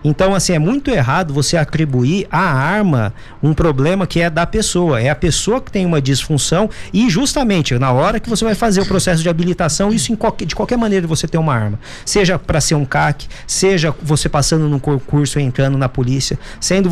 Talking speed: 205 wpm